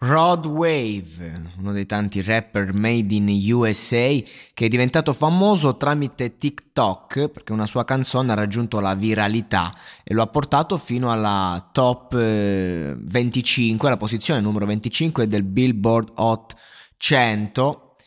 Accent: native